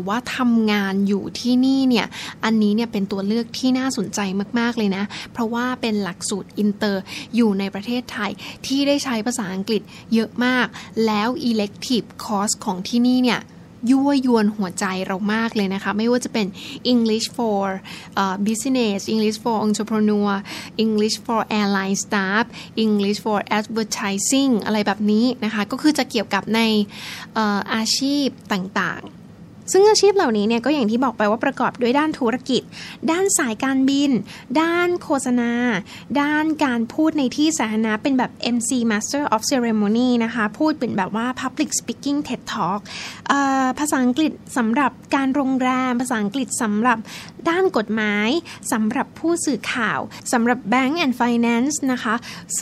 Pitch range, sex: 210-260 Hz, female